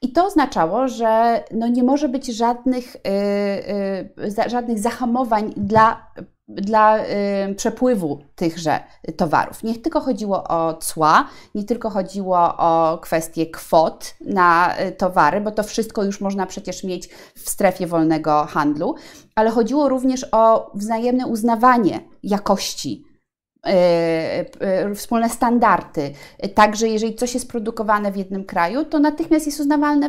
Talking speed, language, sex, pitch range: 120 wpm, Polish, female, 185-245 Hz